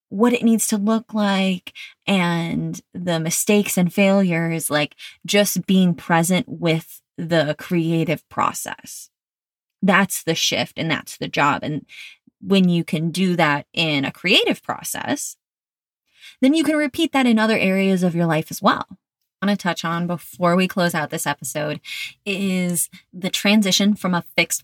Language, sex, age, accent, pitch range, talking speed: English, female, 20-39, American, 160-205 Hz, 160 wpm